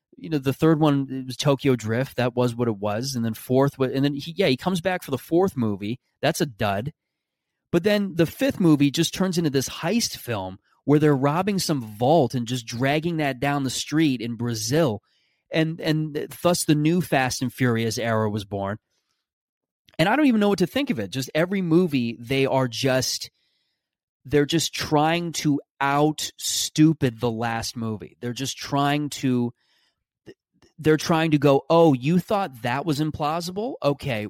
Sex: male